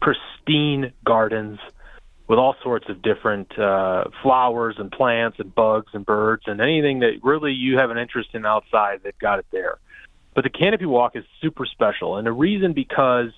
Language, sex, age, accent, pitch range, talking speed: English, male, 30-49, American, 105-130 Hz, 180 wpm